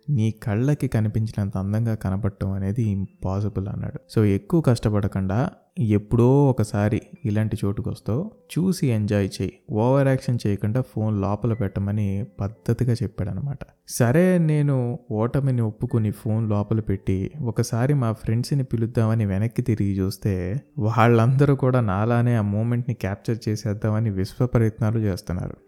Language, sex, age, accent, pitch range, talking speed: Telugu, male, 20-39, native, 105-130 Hz, 110 wpm